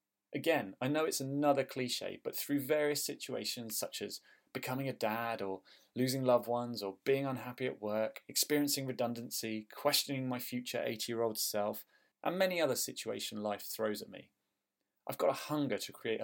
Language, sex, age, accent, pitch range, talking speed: English, male, 30-49, British, 110-155 Hz, 165 wpm